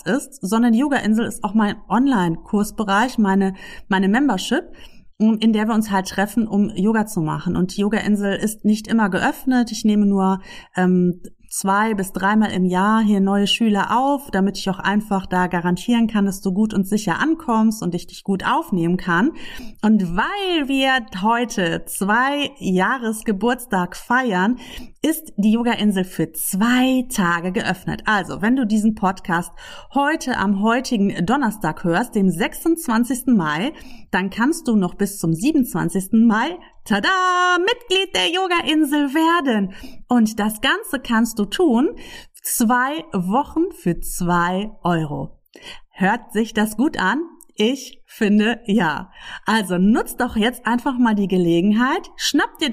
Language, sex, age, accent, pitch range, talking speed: German, female, 30-49, German, 195-255 Hz, 145 wpm